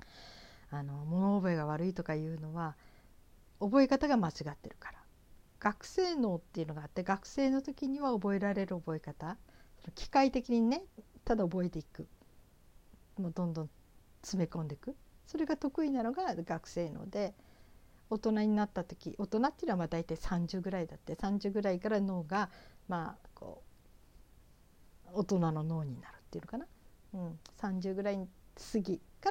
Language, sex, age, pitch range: Japanese, female, 50-69, 160-220 Hz